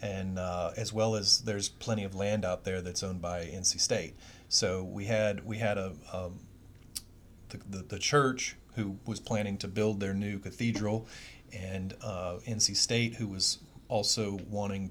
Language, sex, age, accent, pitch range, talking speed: English, male, 40-59, American, 95-105 Hz, 175 wpm